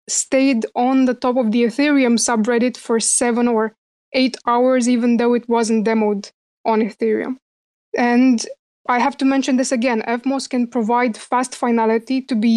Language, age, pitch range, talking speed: English, 20-39, 230-255 Hz, 160 wpm